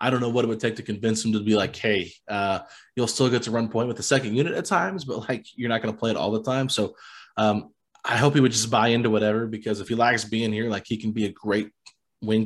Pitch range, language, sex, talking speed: 110-130 Hz, English, male, 295 wpm